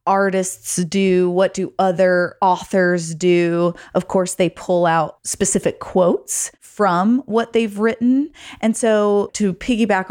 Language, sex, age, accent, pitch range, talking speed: English, female, 20-39, American, 180-225 Hz, 130 wpm